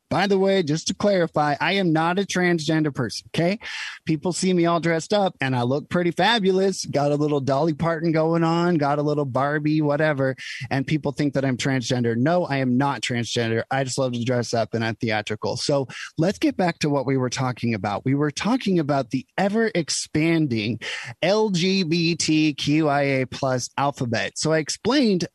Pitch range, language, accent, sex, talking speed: 135-175 Hz, English, American, male, 185 wpm